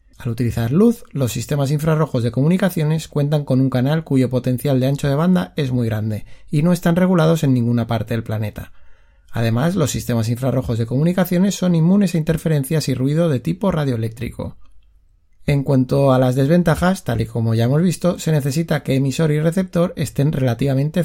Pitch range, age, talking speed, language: 120-155 Hz, 30-49, 180 wpm, Spanish